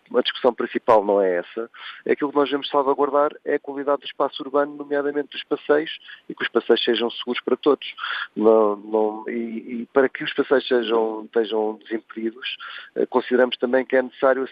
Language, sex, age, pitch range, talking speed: Portuguese, male, 40-59, 110-135 Hz, 185 wpm